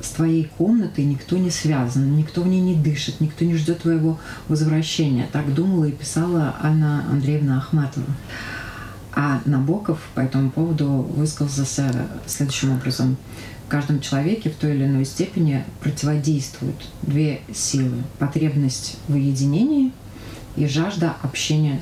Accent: native